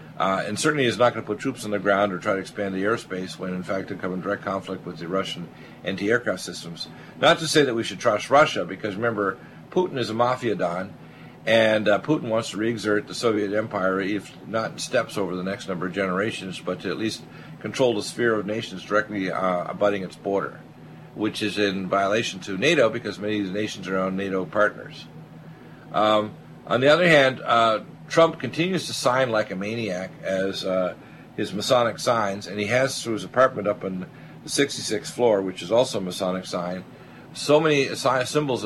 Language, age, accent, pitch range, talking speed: English, 50-69, American, 95-115 Hz, 205 wpm